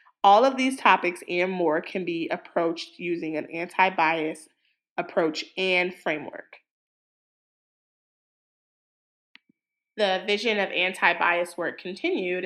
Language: English